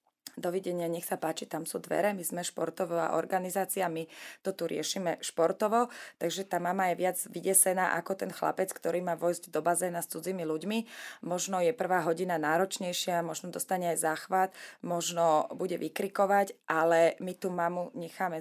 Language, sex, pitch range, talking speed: Slovak, female, 165-190 Hz, 165 wpm